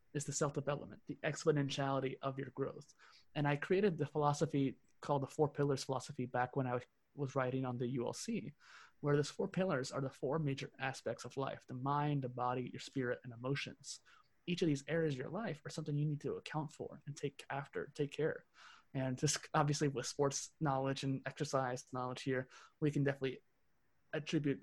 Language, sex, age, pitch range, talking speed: English, male, 20-39, 130-150 Hz, 190 wpm